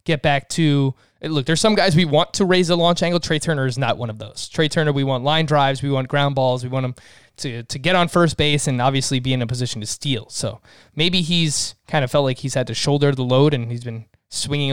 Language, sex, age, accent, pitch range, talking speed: English, male, 20-39, American, 125-170 Hz, 265 wpm